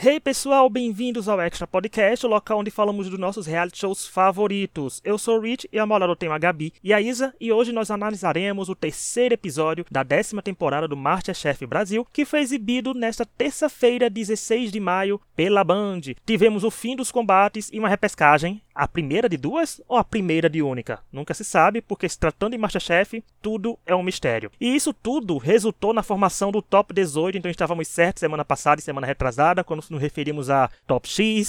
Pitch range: 165-225 Hz